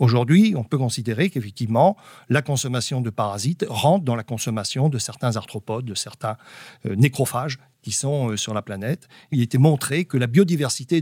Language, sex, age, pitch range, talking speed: French, male, 50-69, 130-195 Hz, 165 wpm